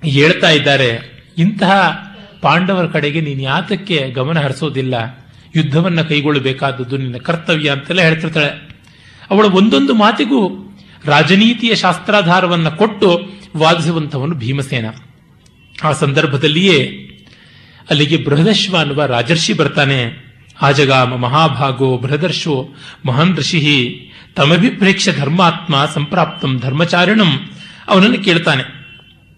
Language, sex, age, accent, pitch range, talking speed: Kannada, male, 40-59, native, 140-185 Hz, 80 wpm